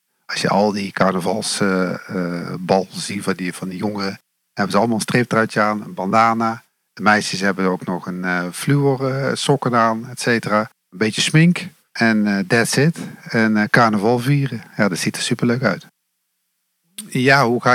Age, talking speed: 50-69, 180 wpm